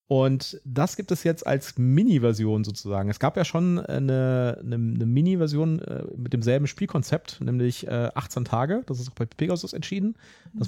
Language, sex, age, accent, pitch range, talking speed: German, male, 30-49, German, 120-150 Hz, 165 wpm